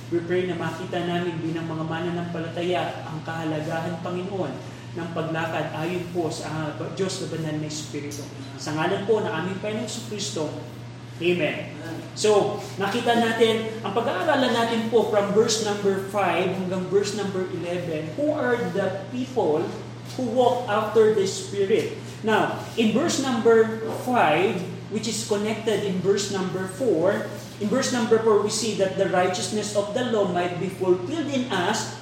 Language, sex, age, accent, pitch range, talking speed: Filipino, male, 20-39, native, 170-230 Hz, 155 wpm